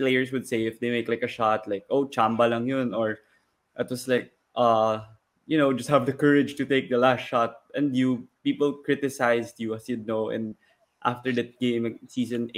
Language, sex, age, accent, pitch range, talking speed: Filipino, male, 20-39, native, 115-130 Hz, 210 wpm